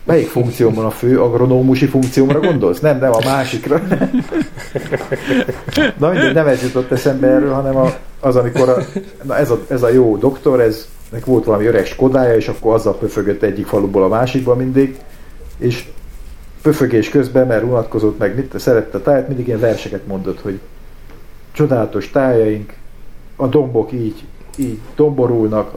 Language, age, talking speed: Hungarian, 50-69, 150 wpm